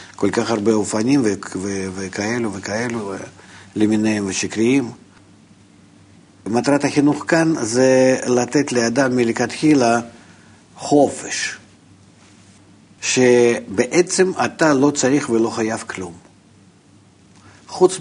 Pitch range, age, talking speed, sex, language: 100-145 Hz, 50-69, 80 wpm, male, Hebrew